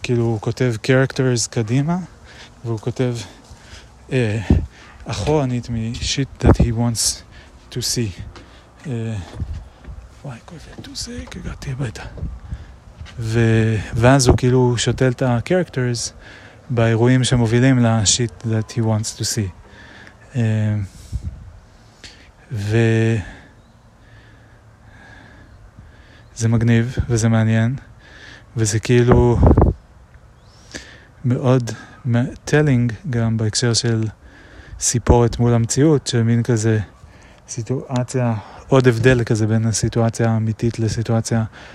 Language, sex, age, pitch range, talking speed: Hebrew, male, 30-49, 105-125 Hz, 85 wpm